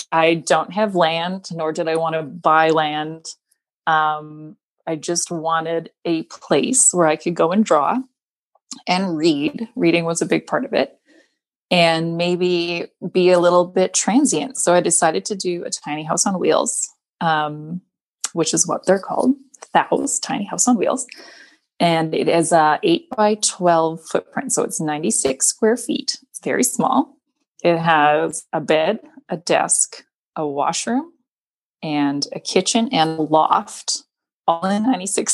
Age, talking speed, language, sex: 20-39, 160 wpm, English, female